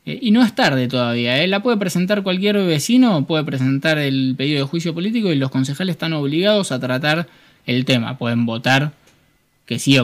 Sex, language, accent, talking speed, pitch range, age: male, Spanish, Argentinian, 185 wpm, 120-150 Hz, 20-39